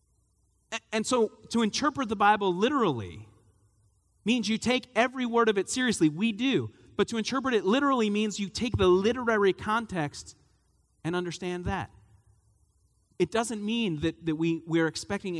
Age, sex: 40-59, male